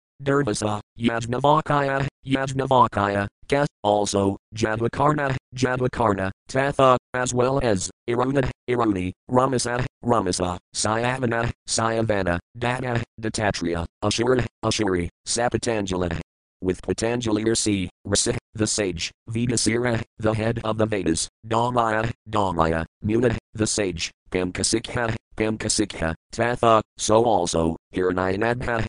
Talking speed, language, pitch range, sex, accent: 95 wpm, English, 95-120 Hz, male, American